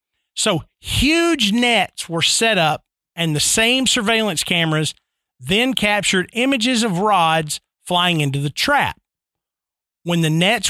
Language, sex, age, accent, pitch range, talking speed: English, male, 50-69, American, 155-215 Hz, 130 wpm